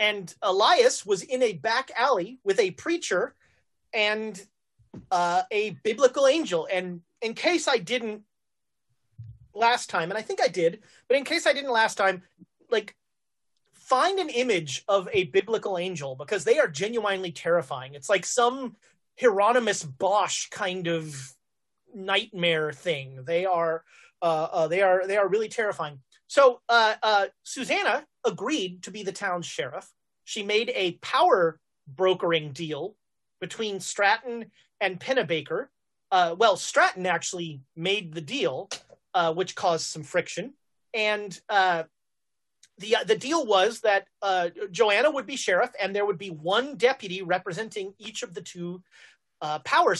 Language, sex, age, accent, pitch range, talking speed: English, male, 30-49, American, 170-235 Hz, 150 wpm